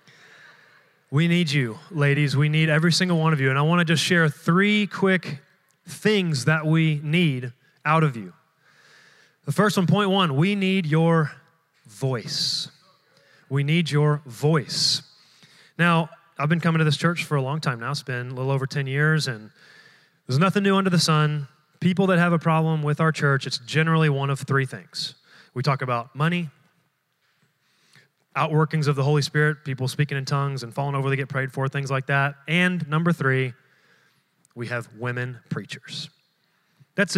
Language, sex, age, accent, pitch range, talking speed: English, male, 30-49, American, 140-175 Hz, 180 wpm